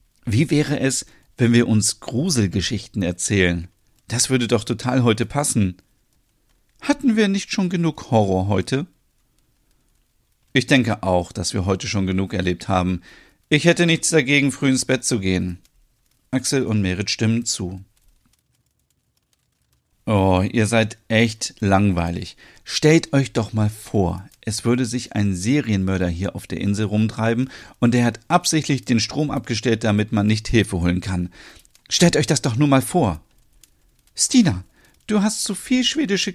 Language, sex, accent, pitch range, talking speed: German, male, German, 100-135 Hz, 150 wpm